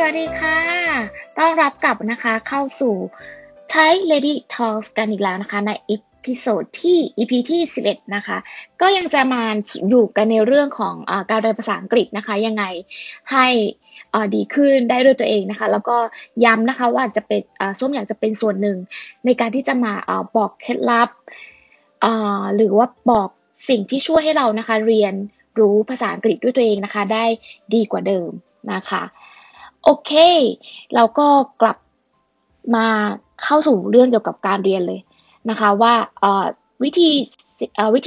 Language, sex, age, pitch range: Thai, female, 20-39, 210-265 Hz